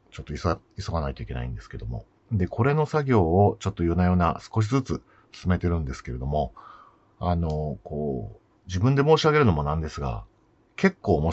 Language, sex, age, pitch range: Japanese, male, 50-69, 80-110 Hz